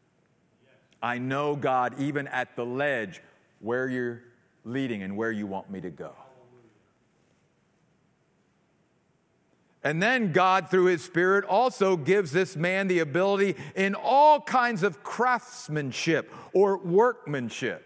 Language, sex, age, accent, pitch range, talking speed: English, male, 50-69, American, 170-230 Hz, 120 wpm